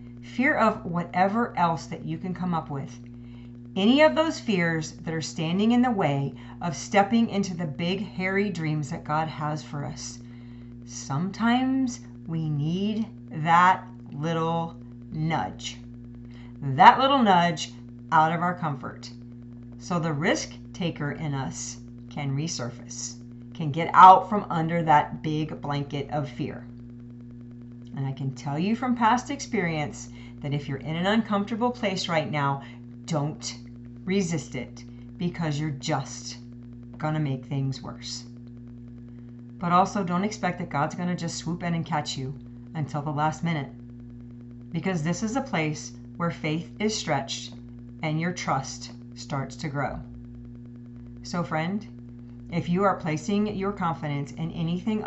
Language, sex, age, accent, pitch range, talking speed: English, female, 40-59, American, 120-175 Hz, 145 wpm